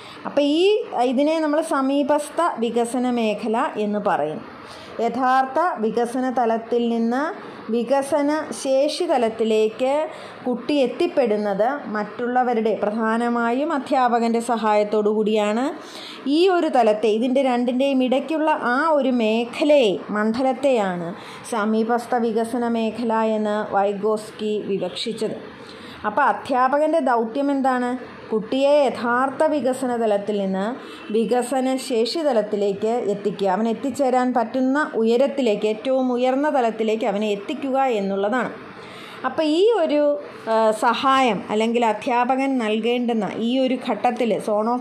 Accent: native